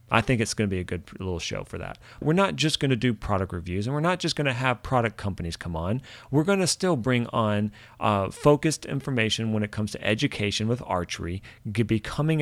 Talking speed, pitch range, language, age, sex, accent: 230 wpm, 105-150 Hz, English, 40-59, male, American